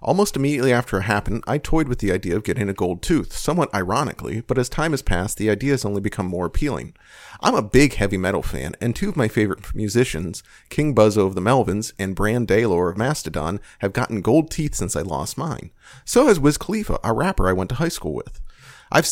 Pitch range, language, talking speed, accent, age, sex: 100-130 Hz, English, 225 wpm, American, 40-59, male